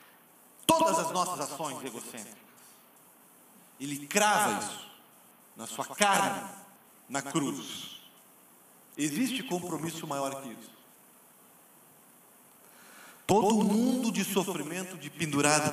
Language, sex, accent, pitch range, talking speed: Portuguese, male, Brazilian, 130-195 Hz, 95 wpm